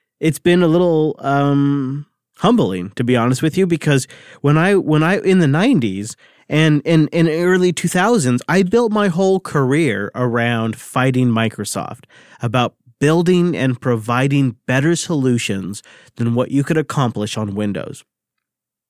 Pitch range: 130-170 Hz